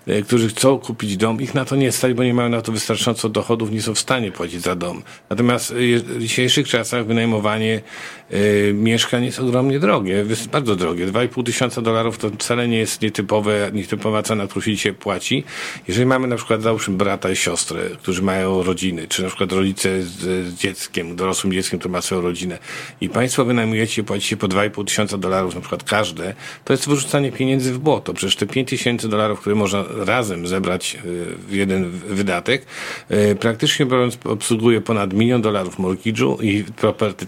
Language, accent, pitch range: Polish, native, 95-120 Hz